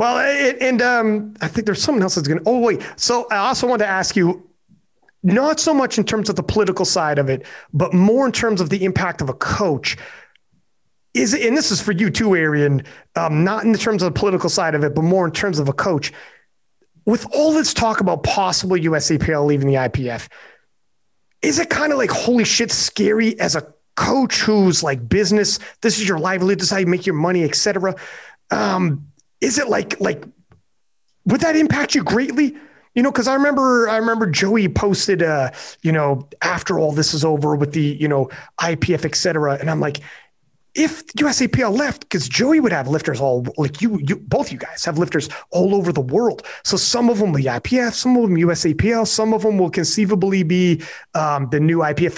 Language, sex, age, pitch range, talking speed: English, male, 30-49, 160-225 Hz, 210 wpm